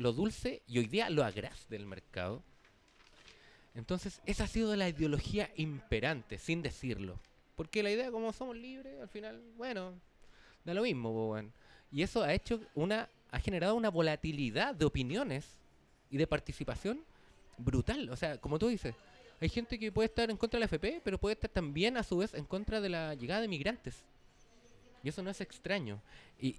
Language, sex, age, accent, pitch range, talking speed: Spanish, male, 30-49, Spanish, 120-200 Hz, 185 wpm